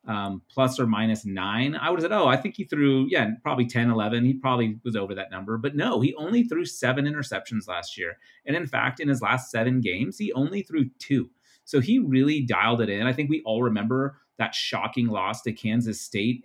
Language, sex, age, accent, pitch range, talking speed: English, male, 30-49, American, 110-130 Hz, 225 wpm